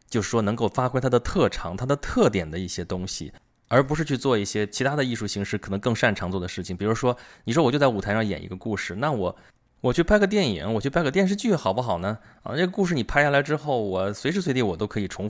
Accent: native